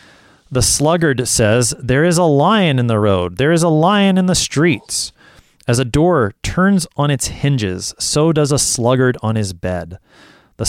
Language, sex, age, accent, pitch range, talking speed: English, male, 30-49, American, 105-135 Hz, 180 wpm